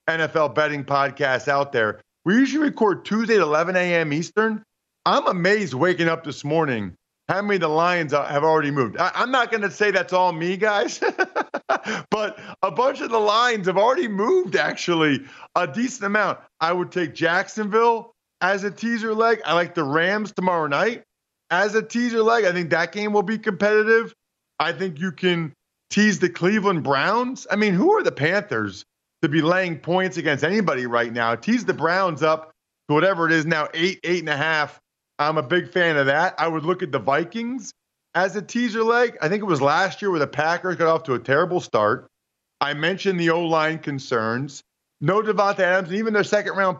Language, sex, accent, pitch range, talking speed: English, male, American, 155-205 Hz, 195 wpm